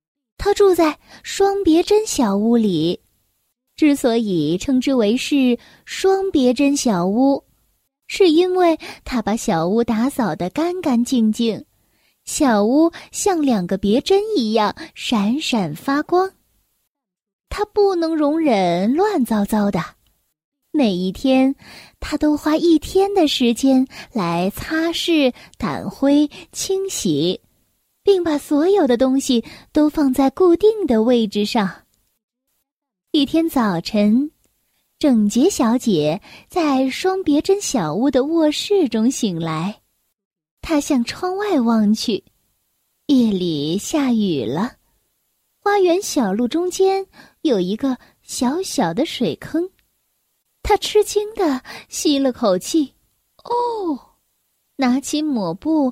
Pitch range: 225-330 Hz